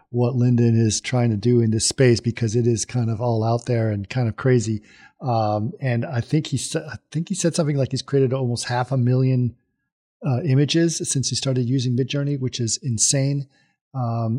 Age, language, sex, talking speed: 40-59, English, male, 205 wpm